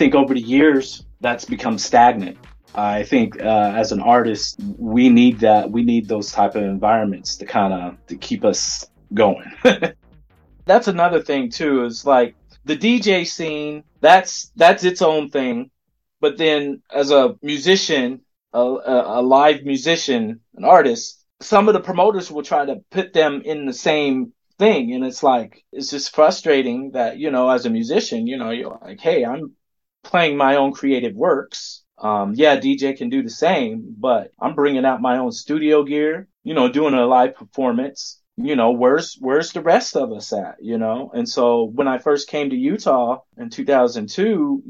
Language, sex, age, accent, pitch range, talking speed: English, male, 30-49, American, 130-215 Hz, 180 wpm